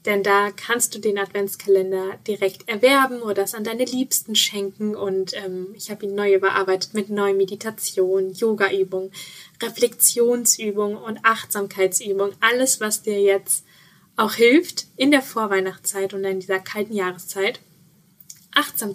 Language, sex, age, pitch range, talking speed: German, female, 10-29, 195-230 Hz, 135 wpm